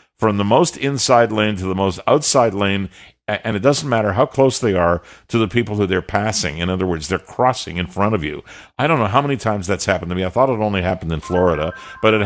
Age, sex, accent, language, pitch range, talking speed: 50-69, male, American, English, 95-125 Hz, 255 wpm